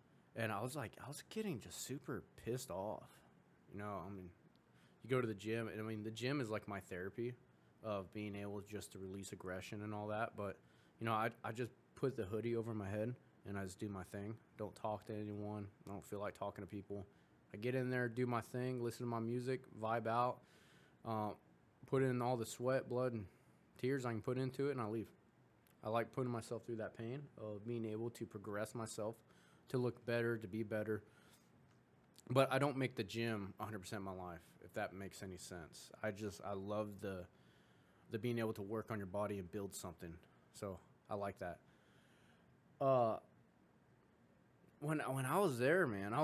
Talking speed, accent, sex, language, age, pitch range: 210 wpm, American, male, English, 20-39, 105-125 Hz